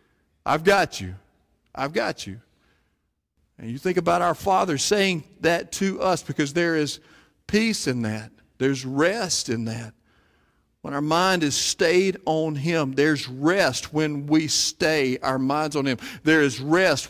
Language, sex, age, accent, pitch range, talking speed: English, male, 50-69, American, 150-215 Hz, 160 wpm